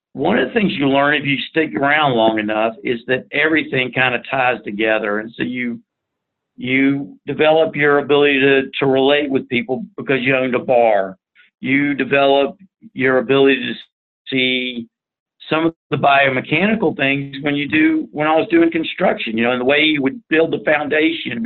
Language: English